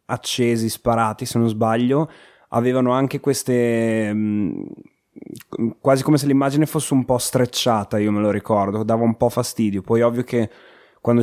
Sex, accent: male, native